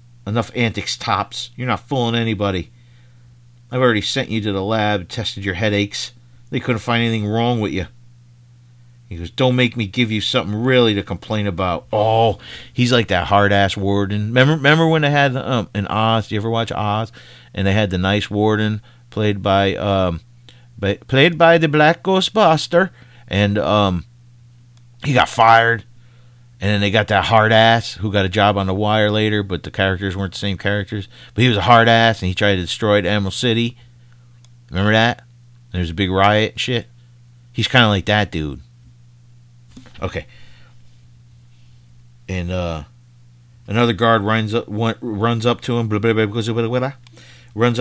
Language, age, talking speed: English, 40-59, 175 wpm